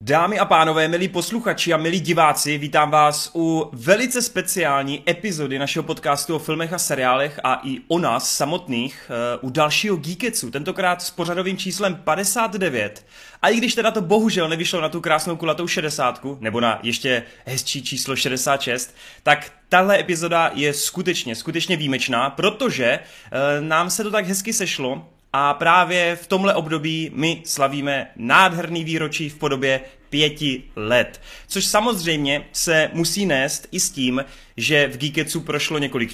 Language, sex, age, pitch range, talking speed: Czech, male, 30-49, 135-170 Hz, 150 wpm